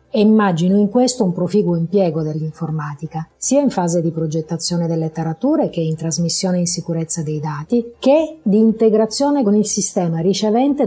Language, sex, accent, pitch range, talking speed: Italian, female, native, 160-195 Hz, 160 wpm